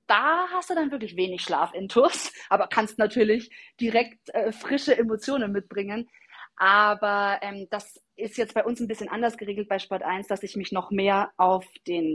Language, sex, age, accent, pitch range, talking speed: German, female, 30-49, German, 190-245 Hz, 190 wpm